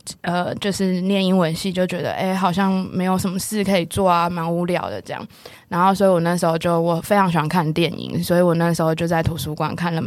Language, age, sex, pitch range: Chinese, 20-39, female, 165-200 Hz